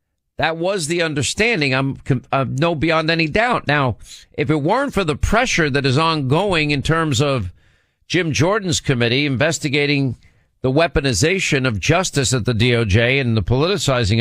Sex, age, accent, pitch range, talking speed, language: male, 50-69, American, 125-170 Hz, 155 wpm, English